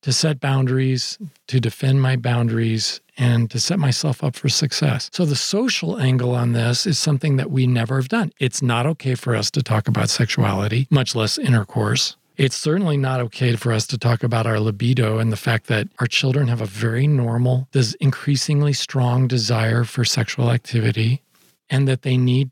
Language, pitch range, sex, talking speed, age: English, 120-145 Hz, male, 190 wpm, 40-59